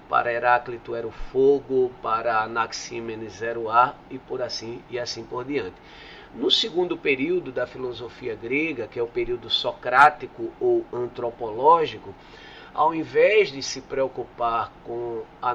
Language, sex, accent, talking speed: Portuguese, male, Brazilian, 145 wpm